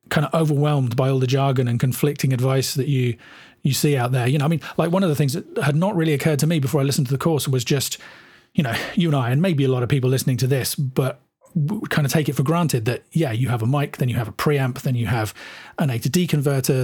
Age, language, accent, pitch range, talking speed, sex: 40-59, English, British, 130-150 Hz, 285 wpm, male